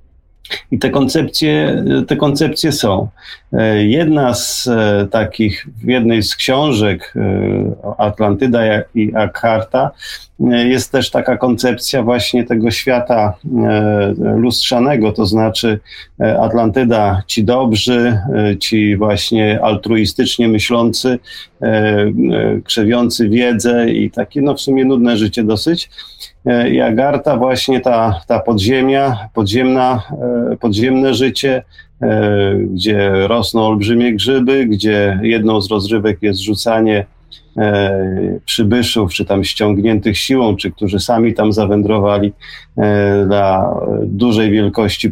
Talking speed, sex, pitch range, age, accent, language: 100 wpm, male, 105-125 Hz, 40-59, native, Polish